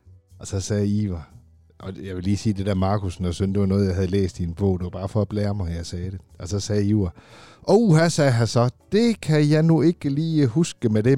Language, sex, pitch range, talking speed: Danish, male, 95-130 Hz, 280 wpm